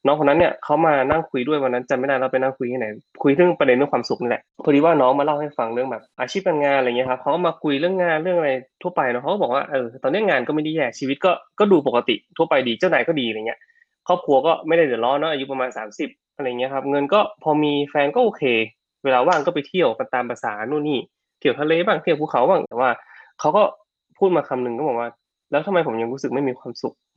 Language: Thai